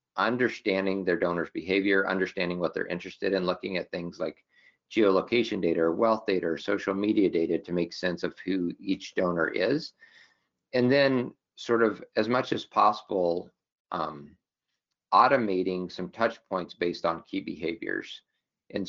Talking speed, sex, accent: 155 wpm, male, American